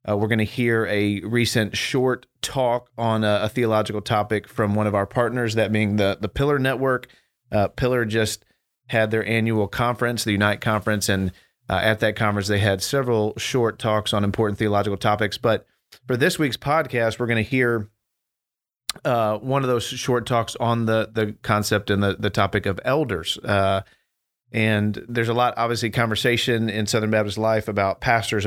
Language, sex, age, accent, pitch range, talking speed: English, male, 40-59, American, 105-120 Hz, 185 wpm